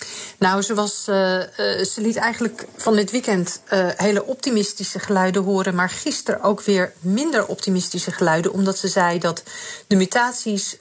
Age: 40-59